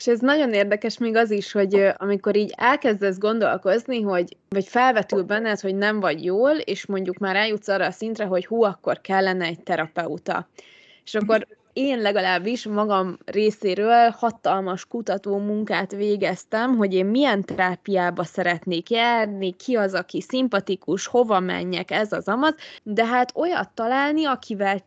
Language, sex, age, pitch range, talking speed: Hungarian, female, 20-39, 185-240 Hz, 150 wpm